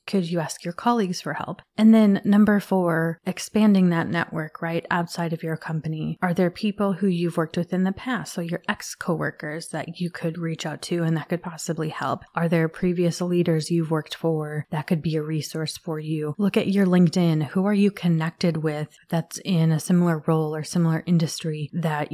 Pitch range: 155-180 Hz